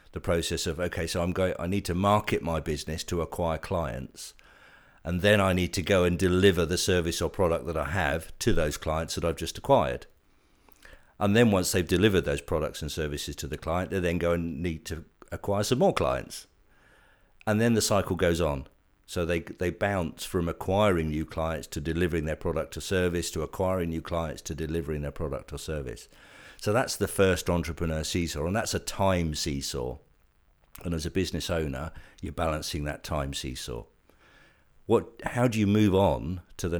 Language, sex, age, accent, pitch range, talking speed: English, male, 50-69, British, 80-95 Hz, 195 wpm